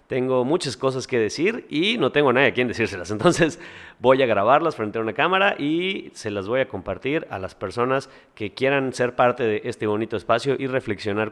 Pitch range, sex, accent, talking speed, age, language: 110-135 Hz, male, Mexican, 205 wpm, 30-49, Spanish